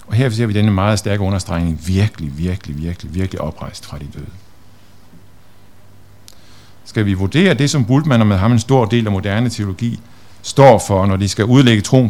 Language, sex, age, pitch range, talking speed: Danish, male, 50-69, 100-115 Hz, 190 wpm